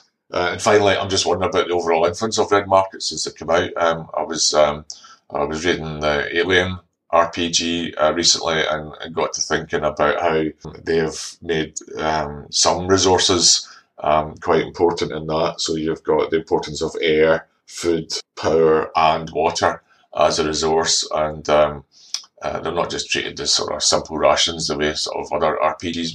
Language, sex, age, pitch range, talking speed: English, male, 30-49, 75-85 Hz, 180 wpm